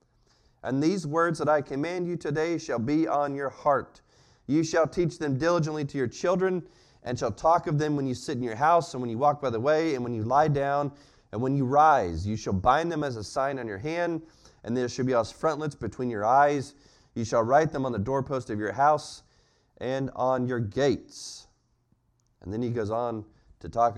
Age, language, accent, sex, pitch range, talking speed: 30-49, English, American, male, 105-150 Hz, 220 wpm